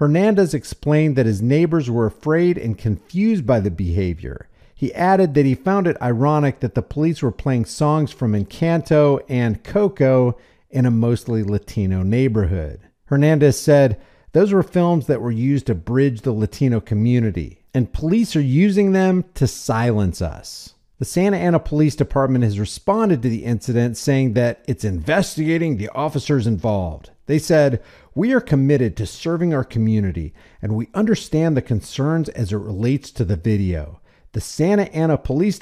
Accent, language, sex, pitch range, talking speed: American, English, male, 105-150 Hz, 160 wpm